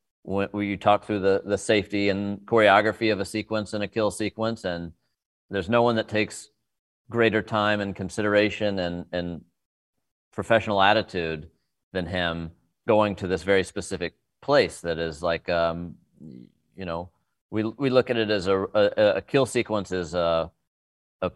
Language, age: English, 40-59